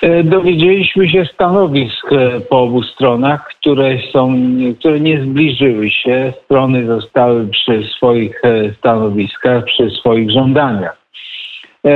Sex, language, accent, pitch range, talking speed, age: male, Polish, native, 110-140 Hz, 95 wpm, 50-69